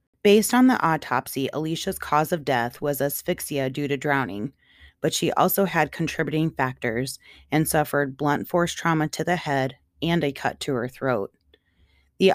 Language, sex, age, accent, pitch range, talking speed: English, female, 30-49, American, 135-165 Hz, 165 wpm